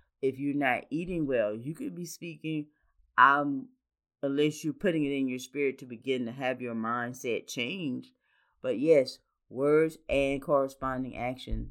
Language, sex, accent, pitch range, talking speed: English, female, American, 115-140 Hz, 155 wpm